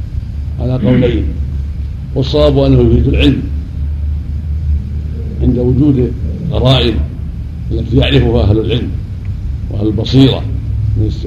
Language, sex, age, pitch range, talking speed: Arabic, male, 60-79, 100-120 Hz, 85 wpm